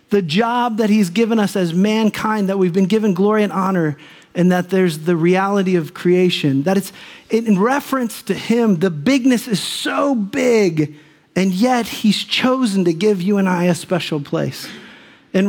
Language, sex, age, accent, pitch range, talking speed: English, male, 40-59, American, 170-210 Hz, 180 wpm